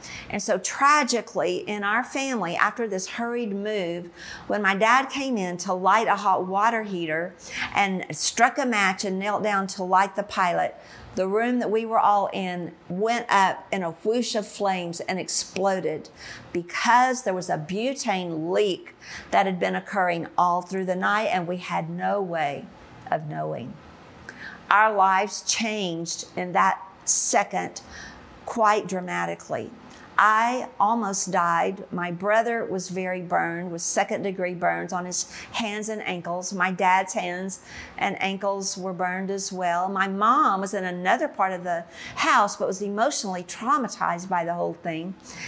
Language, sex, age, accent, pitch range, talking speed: English, female, 50-69, American, 180-215 Hz, 155 wpm